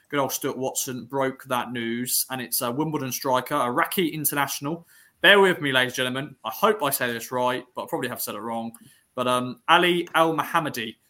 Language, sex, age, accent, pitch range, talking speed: English, male, 20-39, British, 125-160 Hz, 195 wpm